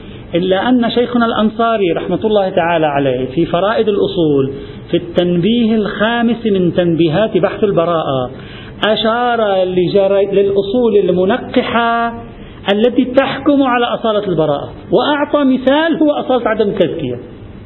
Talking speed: 110 wpm